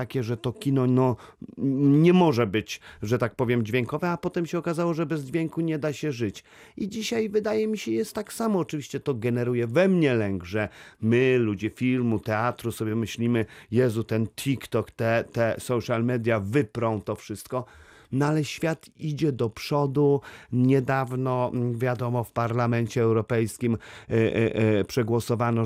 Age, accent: 40-59, native